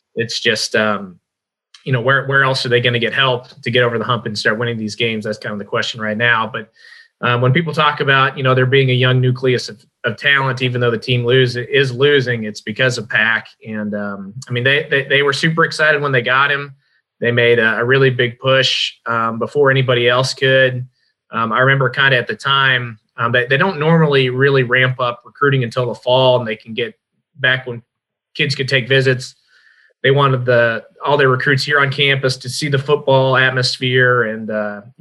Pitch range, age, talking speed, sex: 120-140 Hz, 20-39, 225 wpm, male